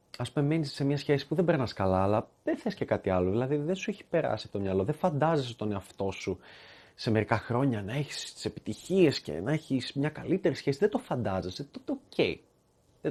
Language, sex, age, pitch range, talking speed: Greek, male, 30-49, 110-170 Hz, 215 wpm